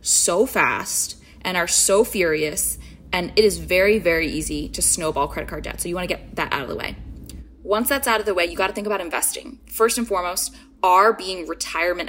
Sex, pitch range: female, 170-210 Hz